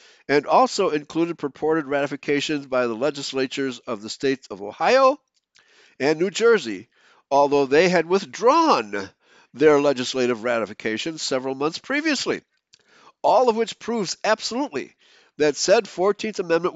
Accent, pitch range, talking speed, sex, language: American, 130-175 Hz, 125 wpm, male, English